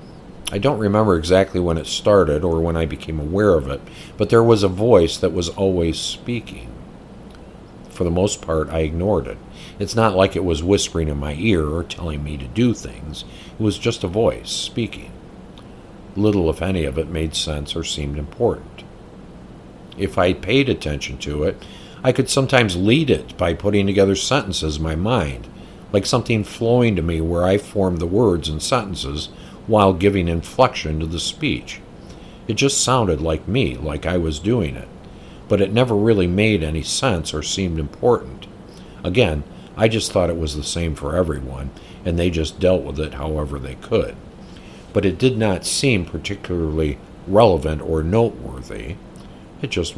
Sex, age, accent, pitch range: male, 50-69, American, 80-105 Hz